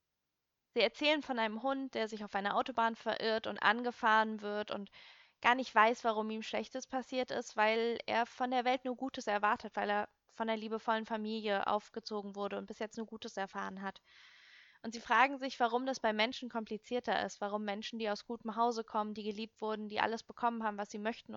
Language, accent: German, German